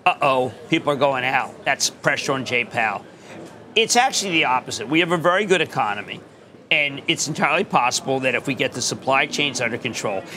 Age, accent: 40-59, American